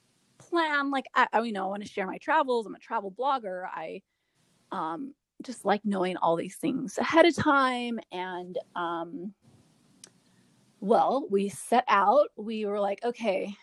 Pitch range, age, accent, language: 190-245 Hz, 30-49, American, English